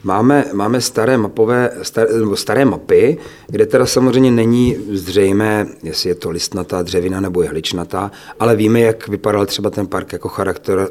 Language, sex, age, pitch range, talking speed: Czech, male, 40-59, 90-105 Hz, 155 wpm